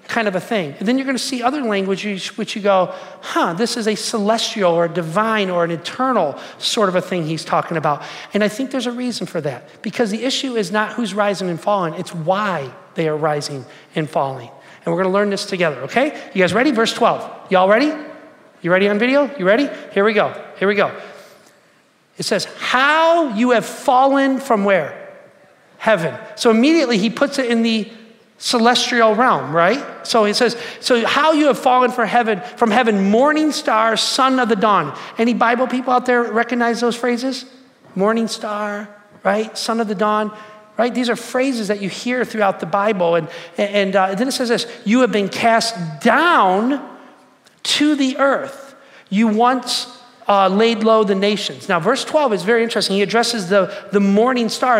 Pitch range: 195-245 Hz